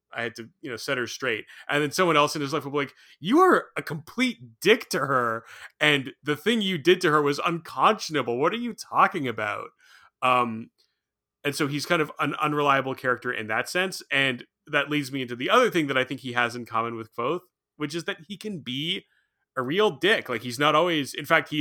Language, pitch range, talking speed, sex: English, 115-145 Hz, 235 wpm, male